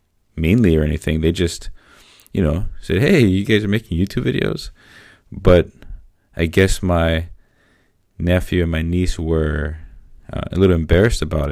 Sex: male